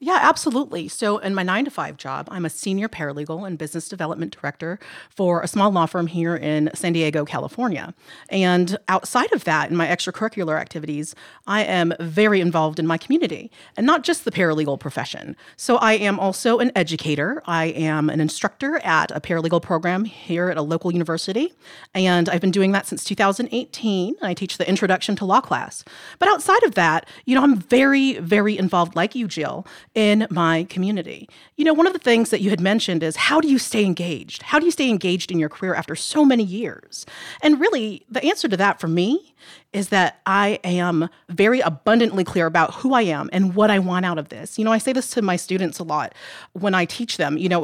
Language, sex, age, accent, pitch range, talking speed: English, female, 40-59, American, 170-230 Hz, 210 wpm